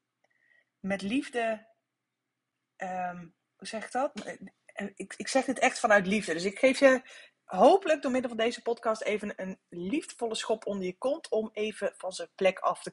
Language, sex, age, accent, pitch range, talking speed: Dutch, female, 20-39, Dutch, 195-245 Hz, 170 wpm